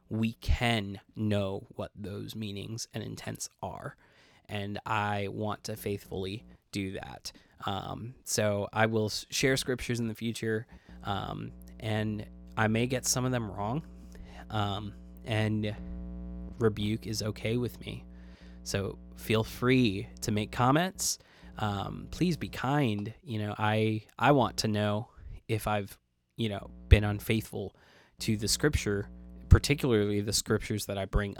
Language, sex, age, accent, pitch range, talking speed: English, male, 20-39, American, 100-115 Hz, 140 wpm